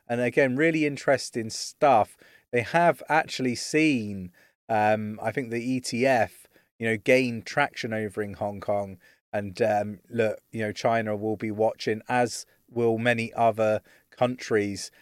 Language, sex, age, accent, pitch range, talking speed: English, male, 30-49, British, 110-130 Hz, 145 wpm